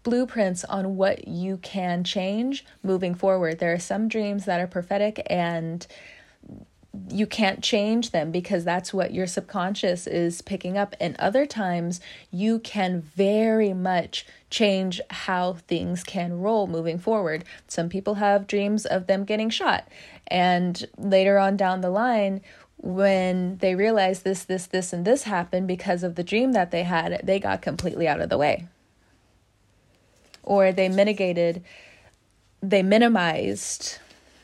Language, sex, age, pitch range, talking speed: English, female, 20-39, 175-200 Hz, 145 wpm